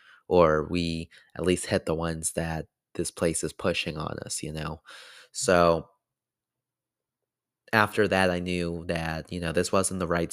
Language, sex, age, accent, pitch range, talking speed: English, male, 30-49, American, 80-95 Hz, 165 wpm